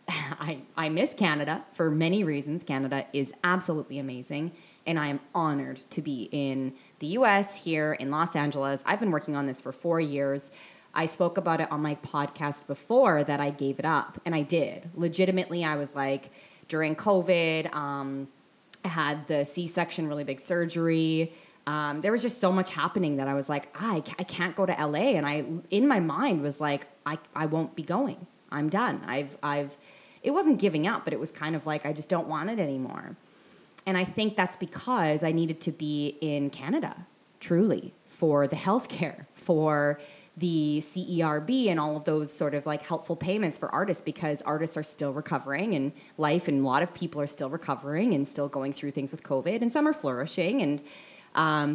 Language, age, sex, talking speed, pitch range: English, 20-39, female, 195 wpm, 145-175 Hz